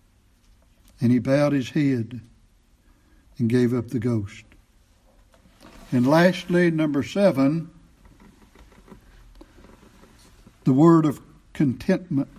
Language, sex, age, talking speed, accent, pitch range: English, male, 60-79, 85 wpm, American, 125-170 Hz